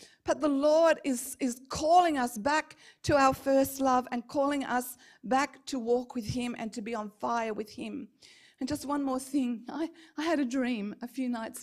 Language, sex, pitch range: English, female, 255-300 Hz